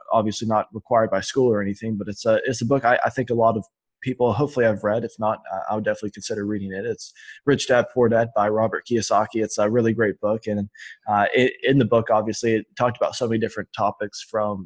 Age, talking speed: 20-39, 240 wpm